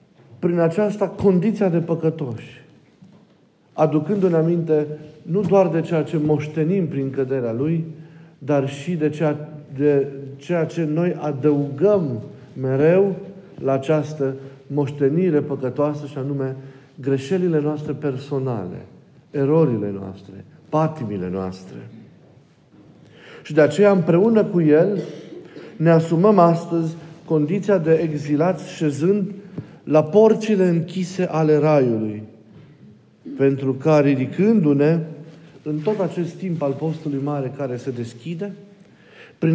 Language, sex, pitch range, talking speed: Romanian, male, 140-180 Hz, 110 wpm